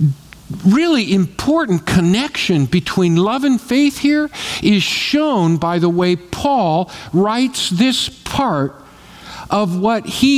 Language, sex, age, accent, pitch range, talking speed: English, male, 50-69, American, 155-255 Hz, 115 wpm